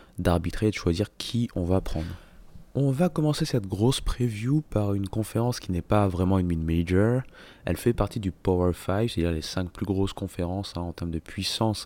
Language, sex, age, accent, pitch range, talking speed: French, male, 20-39, French, 85-110 Hz, 205 wpm